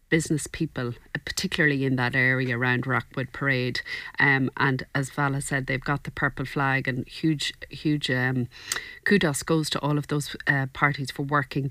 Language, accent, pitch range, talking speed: English, Irish, 130-150 Hz, 170 wpm